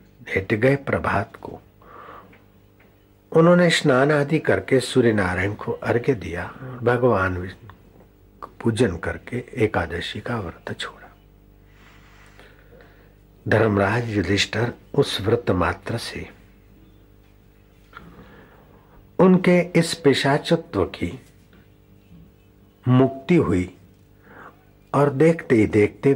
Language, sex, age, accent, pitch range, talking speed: Hindi, male, 60-79, native, 100-135 Hz, 85 wpm